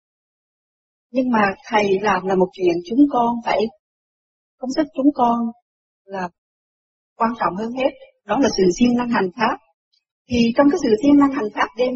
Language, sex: Vietnamese, female